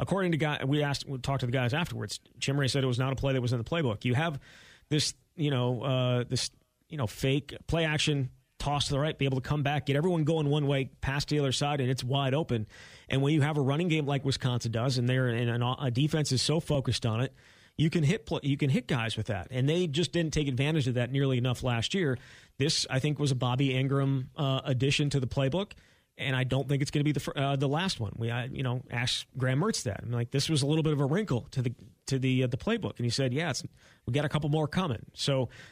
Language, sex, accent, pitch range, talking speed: English, male, American, 125-145 Hz, 270 wpm